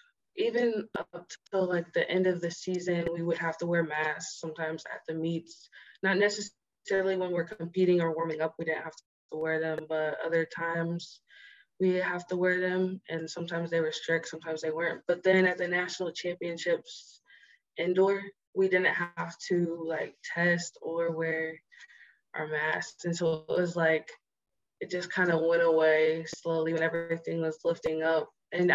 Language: English